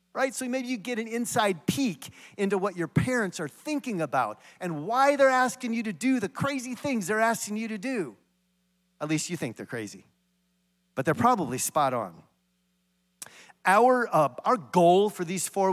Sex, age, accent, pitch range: male, 40-59, American, 155-215 Hz